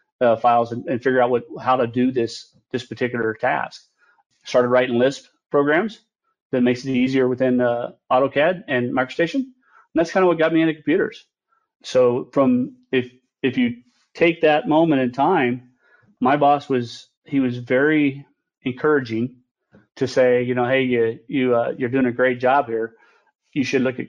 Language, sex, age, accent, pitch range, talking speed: English, male, 40-59, American, 125-145 Hz, 175 wpm